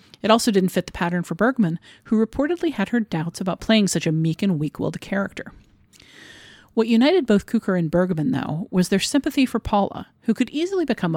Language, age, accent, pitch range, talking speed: English, 40-59, American, 170-225 Hz, 200 wpm